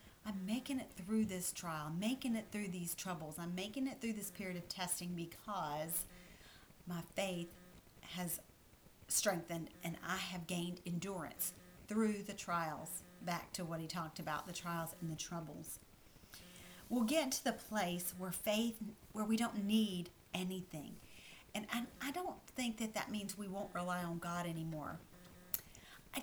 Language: English